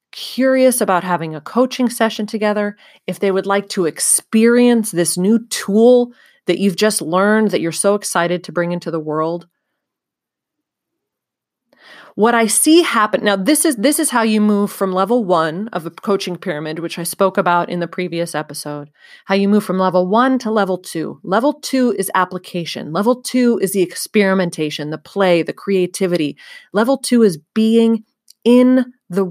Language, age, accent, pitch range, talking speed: English, 30-49, American, 175-225 Hz, 170 wpm